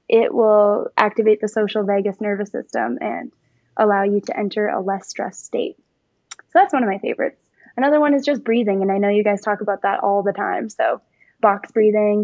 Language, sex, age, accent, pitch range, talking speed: English, female, 10-29, American, 205-235 Hz, 205 wpm